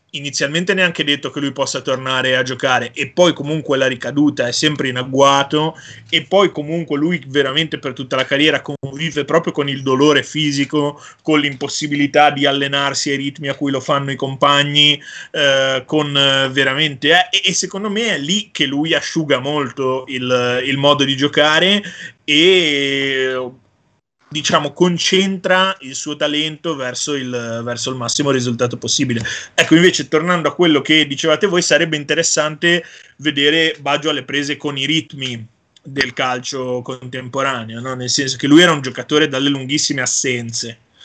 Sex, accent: male, native